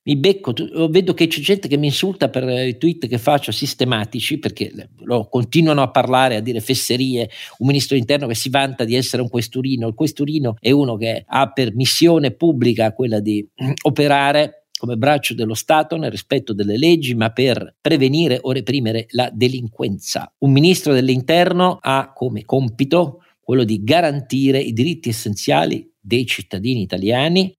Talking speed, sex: 165 wpm, male